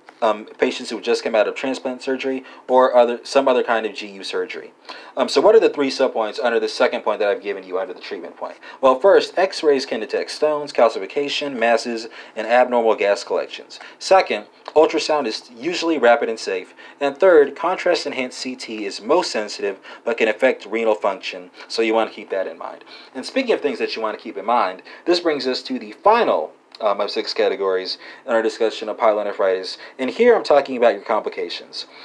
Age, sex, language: 30-49, male, English